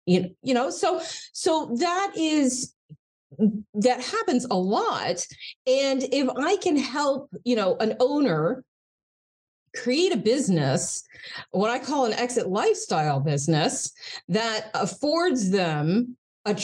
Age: 40-59